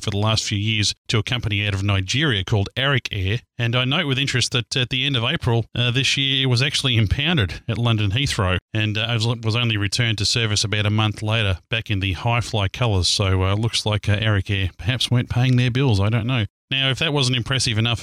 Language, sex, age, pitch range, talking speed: English, male, 30-49, 100-120 Hz, 245 wpm